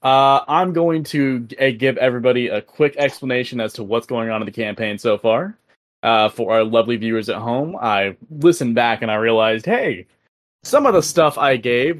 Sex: male